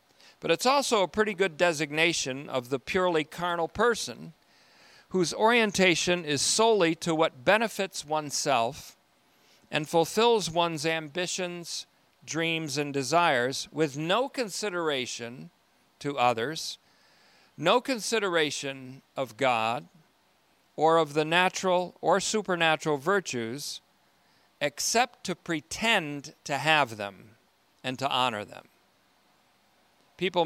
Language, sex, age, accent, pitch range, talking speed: English, male, 50-69, American, 130-170 Hz, 105 wpm